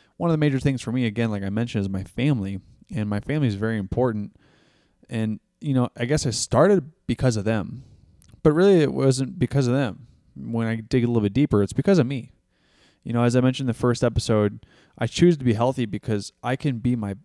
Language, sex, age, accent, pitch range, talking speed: English, male, 20-39, American, 105-140 Hz, 235 wpm